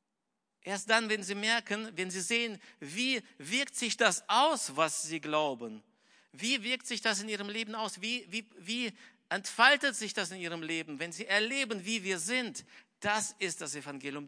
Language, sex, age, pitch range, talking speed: German, male, 60-79, 160-210 Hz, 175 wpm